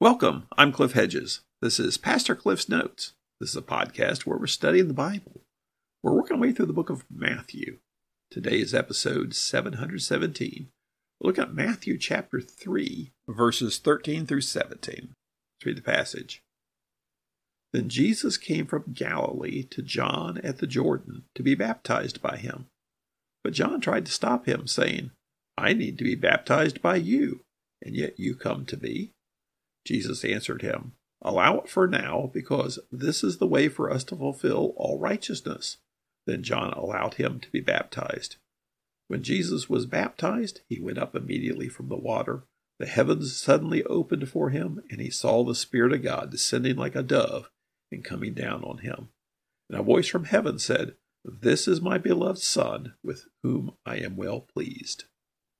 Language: English